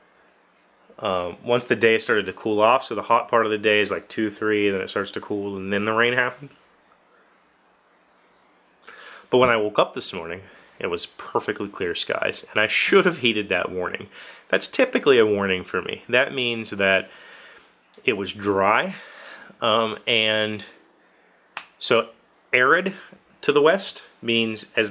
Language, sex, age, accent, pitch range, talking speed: English, male, 30-49, American, 95-115 Hz, 170 wpm